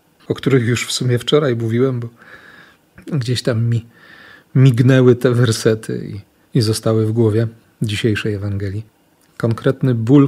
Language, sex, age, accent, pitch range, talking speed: Polish, male, 40-59, native, 110-135 Hz, 135 wpm